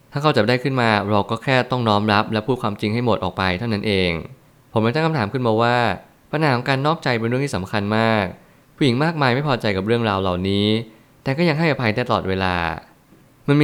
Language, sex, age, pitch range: Thai, male, 20-39, 105-130 Hz